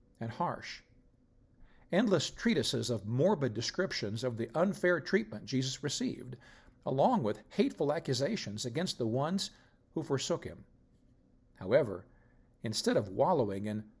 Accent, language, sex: American, English, male